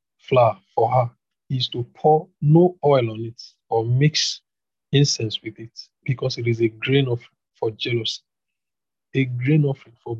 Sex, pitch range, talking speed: male, 115-140 Hz, 160 wpm